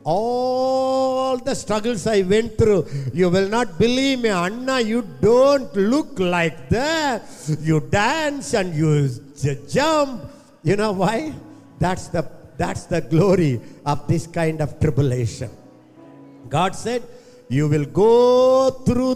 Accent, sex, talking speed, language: Indian, male, 130 wpm, English